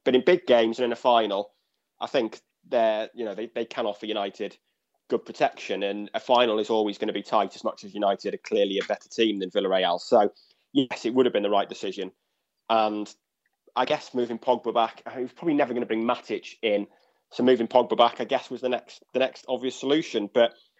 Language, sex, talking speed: English, male, 230 wpm